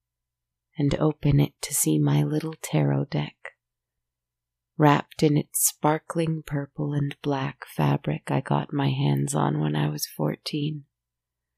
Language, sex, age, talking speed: English, female, 30-49, 135 wpm